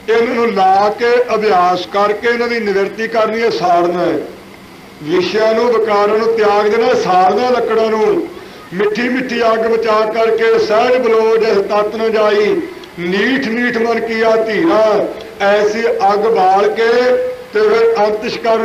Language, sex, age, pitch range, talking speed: Punjabi, male, 50-69, 215-245 Hz, 140 wpm